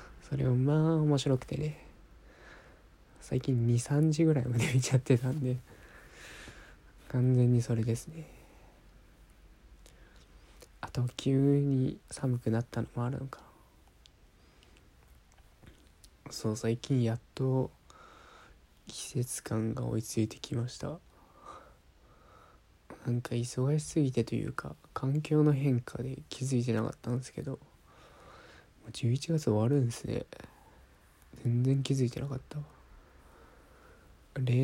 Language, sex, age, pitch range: Japanese, male, 20-39, 115-135 Hz